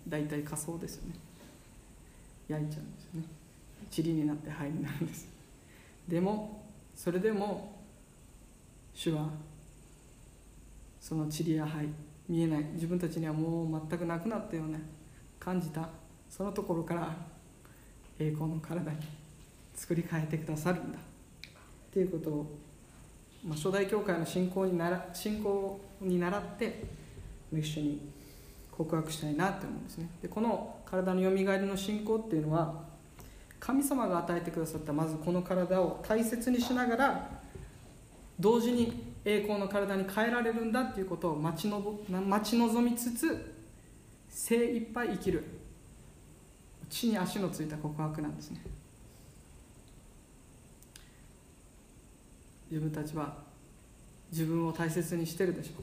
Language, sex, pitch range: Japanese, female, 155-200 Hz